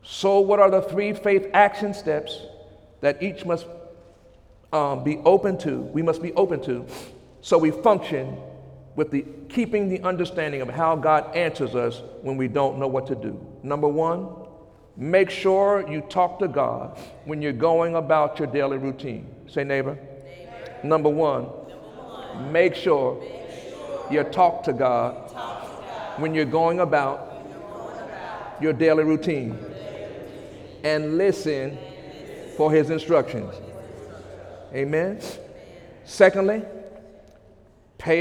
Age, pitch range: 50-69, 150-195 Hz